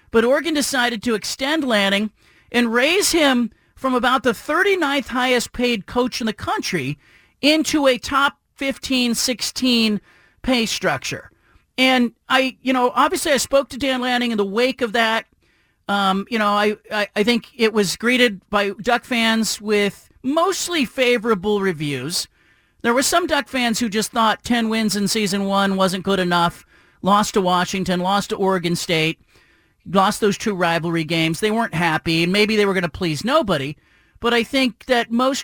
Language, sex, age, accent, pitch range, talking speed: English, male, 40-59, American, 195-260 Hz, 170 wpm